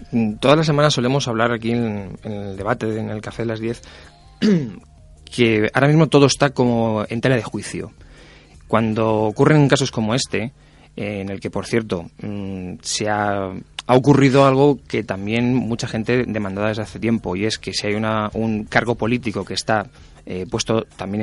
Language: Spanish